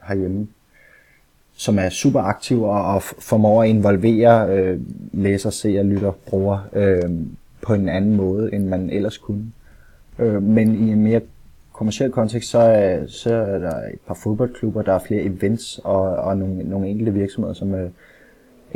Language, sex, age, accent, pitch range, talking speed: Danish, male, 20-39, native, 100-125 Hz, 160 wpm